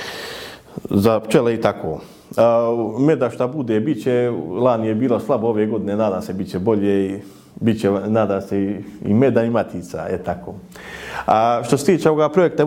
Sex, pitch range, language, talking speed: male, 110-140 Hz, Croatian, 175 wpm